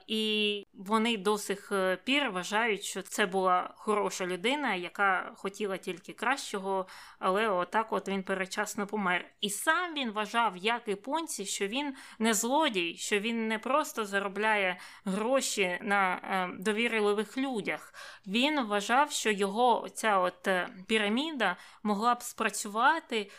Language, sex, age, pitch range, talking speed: Ukrainian, female, 20-39, 195-235 Hz, 130 wpm